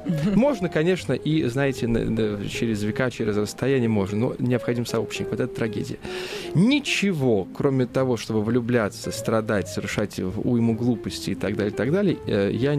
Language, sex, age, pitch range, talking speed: Russian, male, 20-39, 105-145 Hz, 135 wpm